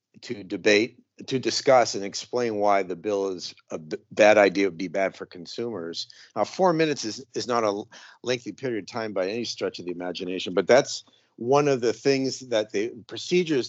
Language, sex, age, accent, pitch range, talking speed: English, male, 50-69, American, 100-125 Hz, 195 wpm